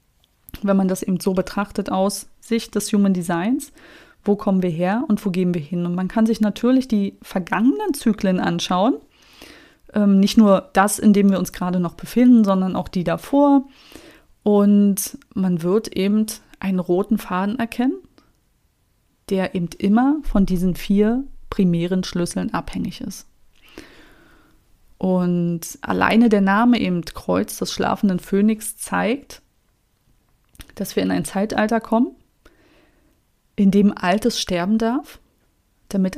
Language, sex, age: German, female, 30-49